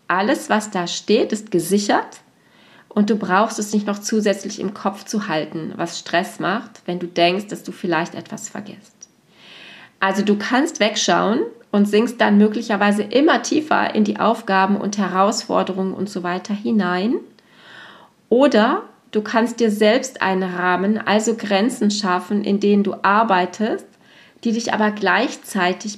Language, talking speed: German, 150 wpm